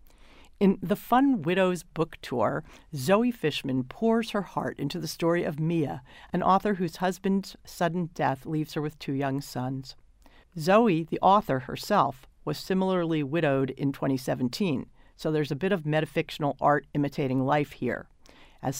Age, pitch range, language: 50-69, 135-180 Hz, English